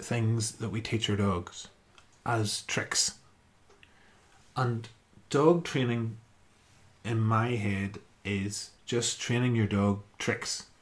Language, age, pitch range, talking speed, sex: English, 30-49, 100-115 Hz, 110 wpm, male